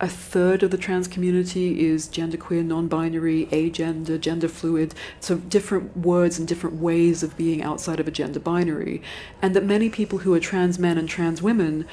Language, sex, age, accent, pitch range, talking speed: English, female, 40-59, British, 155-180 Hz, 175 wpm